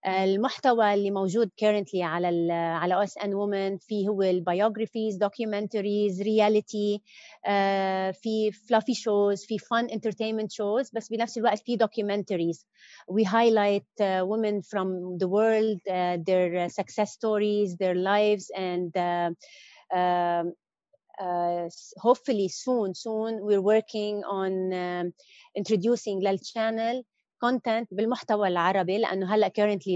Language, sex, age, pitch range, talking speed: Arabic, female, 30-49, 185-215 Hz, 120 wpm